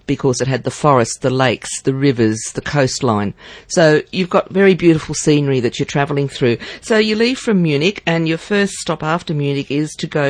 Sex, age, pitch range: female, 50-69, 135-165 Hz